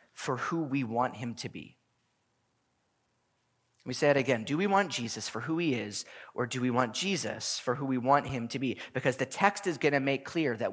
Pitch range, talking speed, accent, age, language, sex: 125-165 Hz, 220 wpm, American, 30-49, English, male